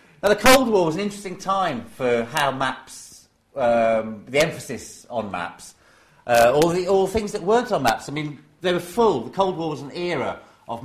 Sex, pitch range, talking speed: male, 120-180 Hz, 210 wpm